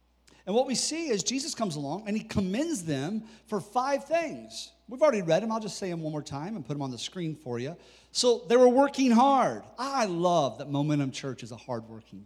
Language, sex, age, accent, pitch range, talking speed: English, male, 40-59, American, 185-280 Hz, 230 wpm